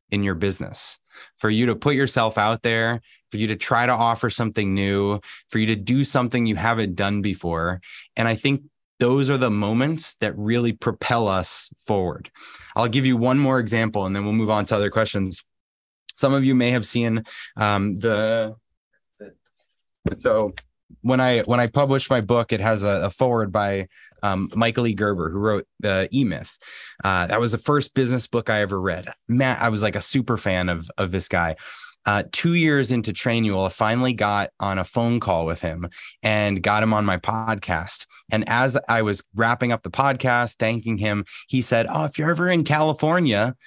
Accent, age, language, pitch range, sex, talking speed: American, 20-39, English, 105-125 Hz, male, 200 wpm